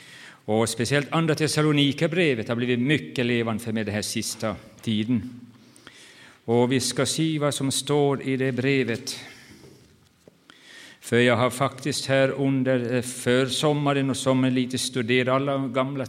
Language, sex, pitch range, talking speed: Swedish, male, 115-135 Hz, 140 wpm